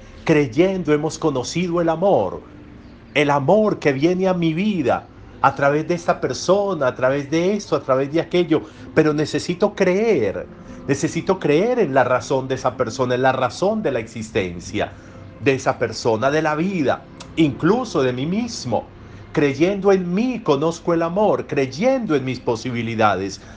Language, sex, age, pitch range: Spanish, male, 50-69, 110-150 Hz